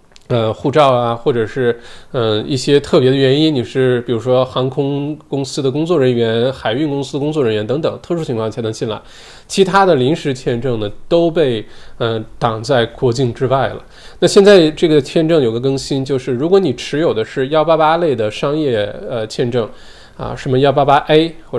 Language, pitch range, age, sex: Chinese, 120-155 Hz, 20-39, male